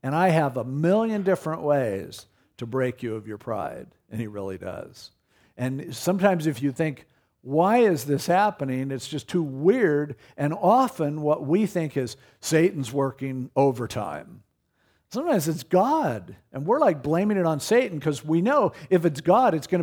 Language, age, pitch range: English, 50-69, 120-160 Hz